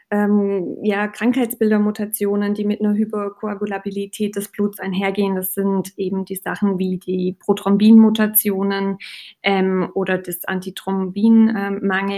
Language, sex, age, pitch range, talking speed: German, female, 20-39, 195-220 Hz, 110 wpm